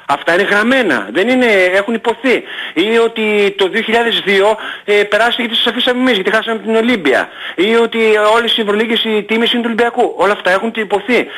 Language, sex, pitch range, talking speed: Greek, male, 185-255 Hz, 185 wpm